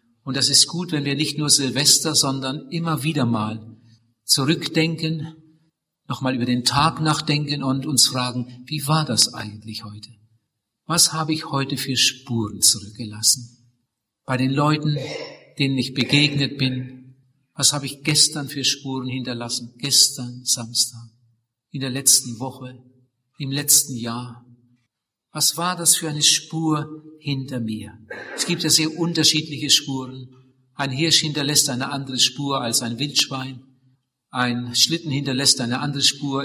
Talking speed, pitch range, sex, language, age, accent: 140 wpm, 125-150 Hz, male, German, 50-69, German